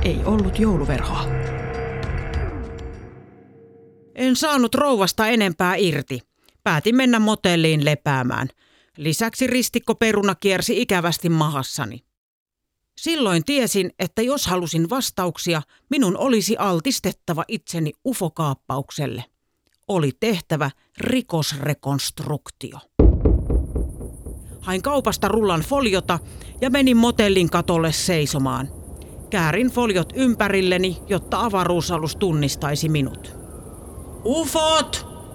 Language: Finnish